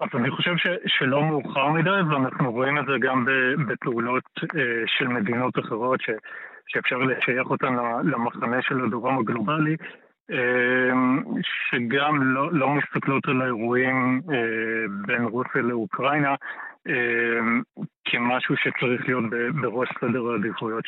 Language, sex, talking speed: Hebrew, male, 110 wpm